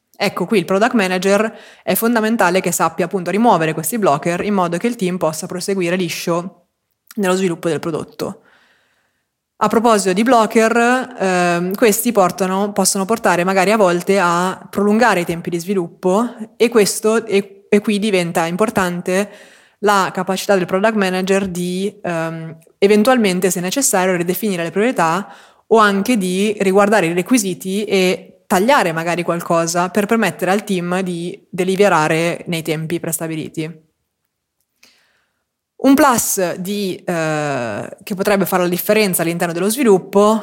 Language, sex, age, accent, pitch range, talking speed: Italian, female, 20-39, native, 175-210 Hz, 135 wpm